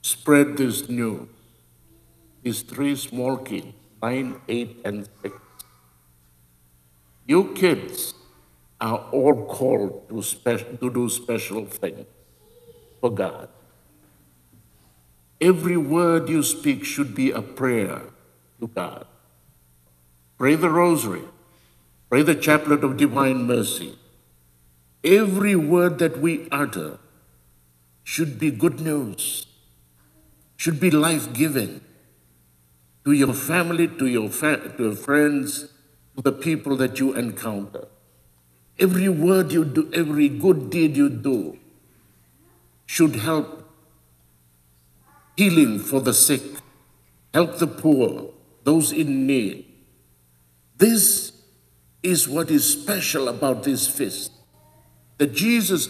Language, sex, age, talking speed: English, male, 60-79, 105 wpm